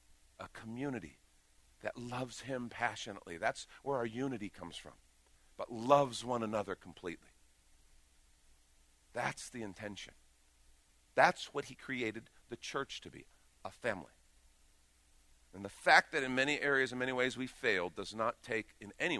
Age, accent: 50-69, American